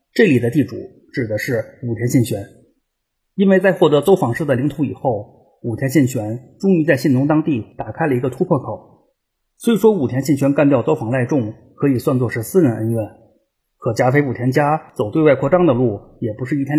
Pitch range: 120-150 Hz